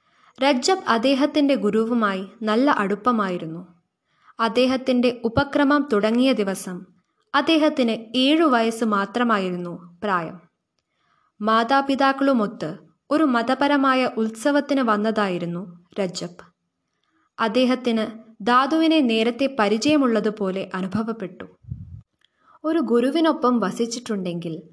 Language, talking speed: Malayalam, 70 wpm